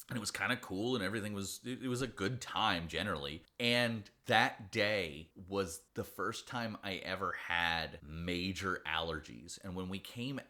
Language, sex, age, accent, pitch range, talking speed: English, male, 30-49, American, 85-115 Hz, 175 wpm